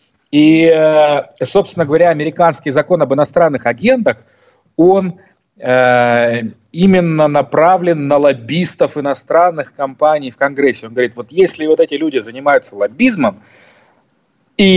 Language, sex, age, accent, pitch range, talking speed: Russian, male, 40-59, native, 130-185 Hz, 110 wpm